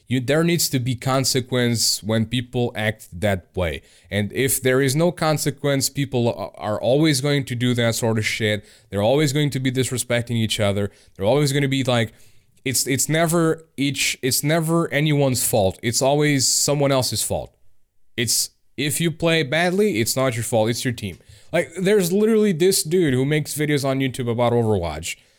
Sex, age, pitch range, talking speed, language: male, 20-39, 110-155 Hz, 185 wpm, English